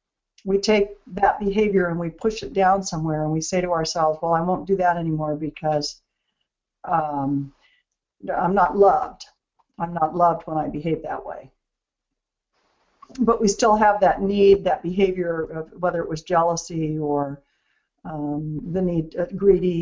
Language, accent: English, American